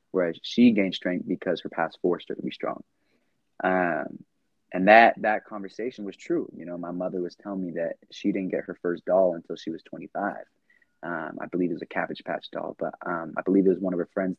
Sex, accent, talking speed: male, American, 235 wpm